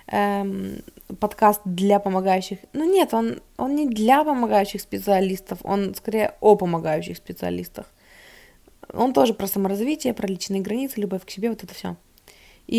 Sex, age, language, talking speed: female, 20-39, Russian, 145 wpm